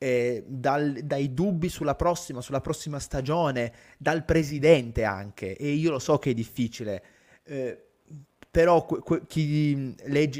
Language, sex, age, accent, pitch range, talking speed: Italian, male, 20-39, native, 120-165 Hz, 145 wpm